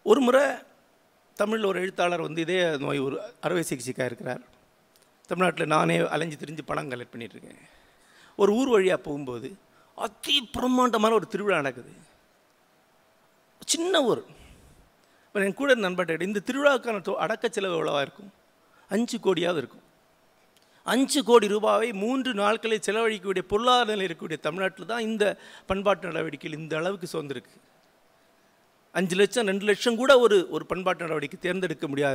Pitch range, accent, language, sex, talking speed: 160-235 Hz, native, Tamil, male, 130 wpm